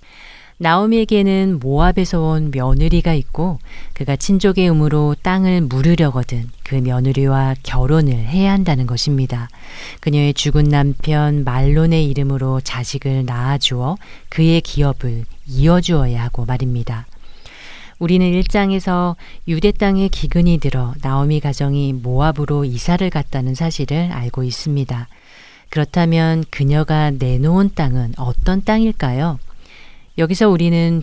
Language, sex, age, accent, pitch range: Korean, female, 40-59, native, 135-180 Hz